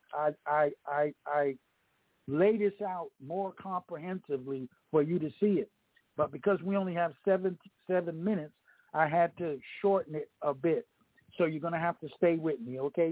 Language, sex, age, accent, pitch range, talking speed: English, male, 60-79, American, 160-200 Hz, 175 wpm